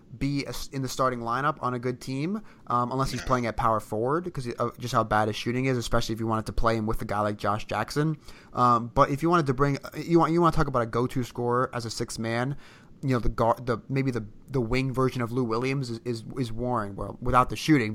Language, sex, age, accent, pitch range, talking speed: English, male, 20-39, American, 115-135 Hz, 255 wpm